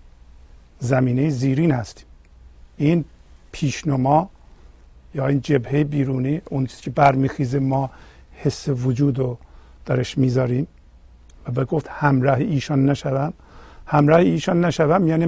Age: 50-69